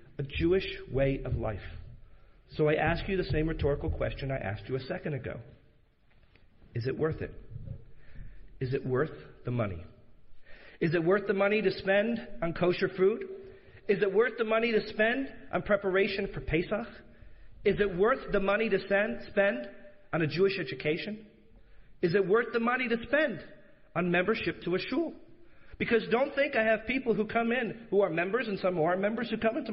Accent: American